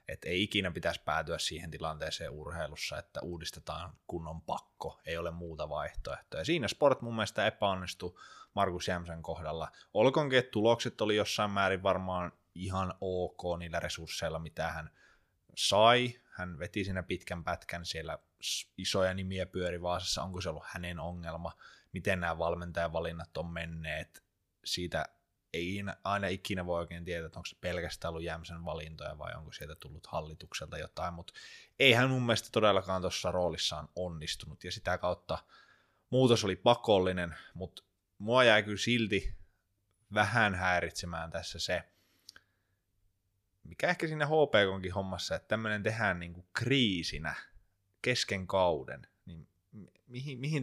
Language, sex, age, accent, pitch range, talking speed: Finnish, male, 20-39, native, 85-105 Hz, 135 wpm